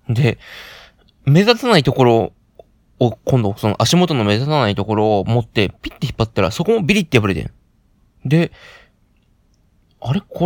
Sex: male